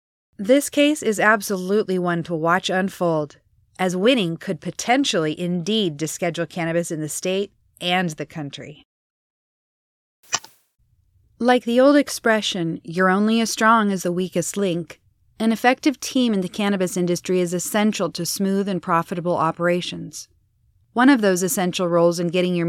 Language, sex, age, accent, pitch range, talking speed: English, female, 30-49, American, 170-210 Hz, 145 wpm